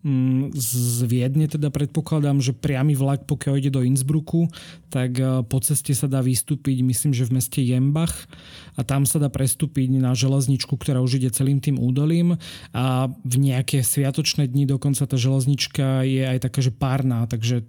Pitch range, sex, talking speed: 130-145 Hz, male, 165 wpm